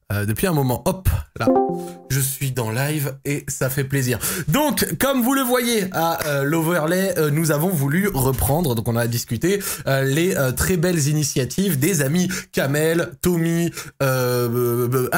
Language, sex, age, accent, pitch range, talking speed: French, male, 20-39, French, 120-160 Hz, 165 wpm